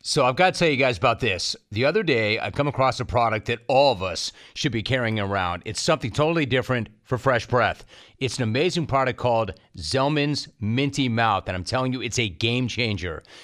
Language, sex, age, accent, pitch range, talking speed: English, male, 40-59, American, 120-145 Hz, 215 wpm